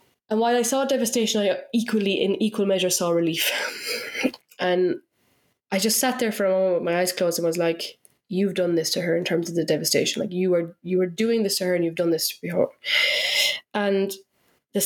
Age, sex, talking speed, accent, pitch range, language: 20-39, female, 220 wpm, Irish, 175-205 Hz, English